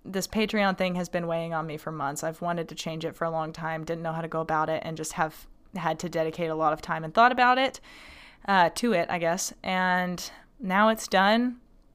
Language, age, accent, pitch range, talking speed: English, 20-39, American, 170-205 Hz, 245 wpm